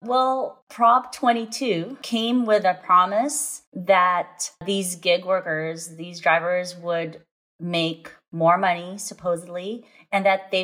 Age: 30-49